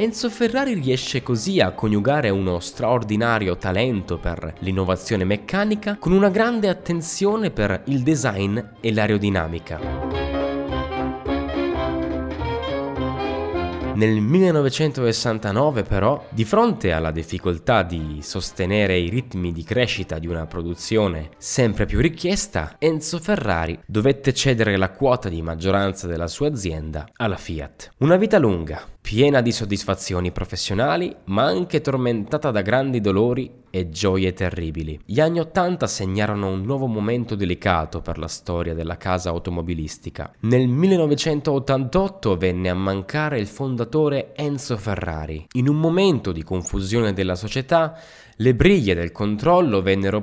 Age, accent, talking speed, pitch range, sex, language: 10-29, native, 125 wpm, 90-140 Hz, male, Italian